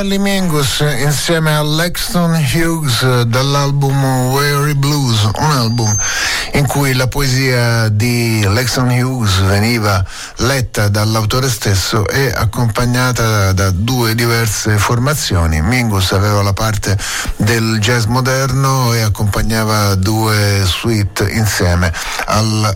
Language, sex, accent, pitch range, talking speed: Italian, male, native, 105-130 Hz, 105 wpm